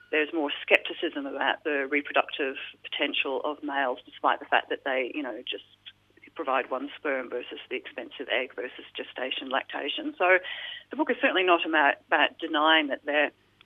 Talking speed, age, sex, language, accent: 160 wpm, 40-59, female, English, Australian